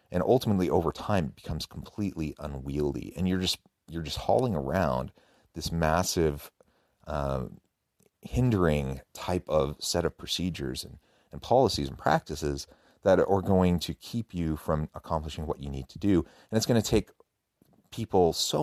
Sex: male